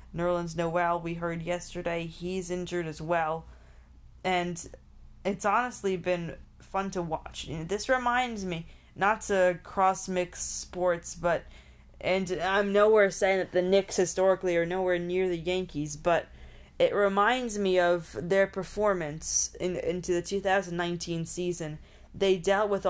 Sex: female